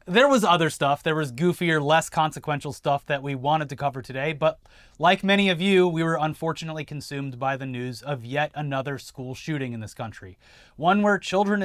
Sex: male